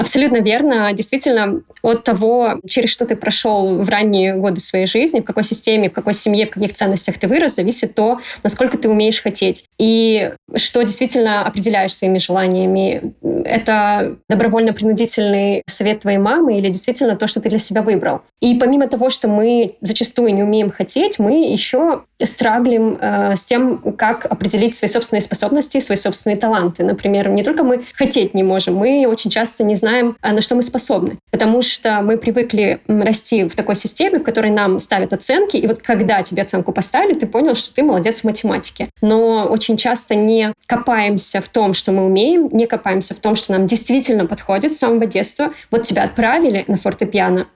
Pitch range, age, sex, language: 205-240 Hz, 20-39, female, Russian